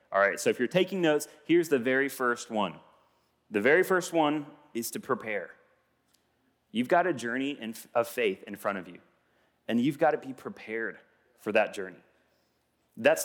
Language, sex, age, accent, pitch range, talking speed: English, male, 30-49, American, 105-160 Hz, 175 wpm